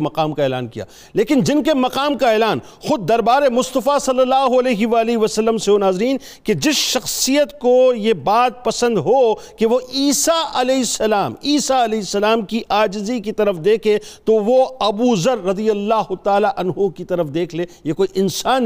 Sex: male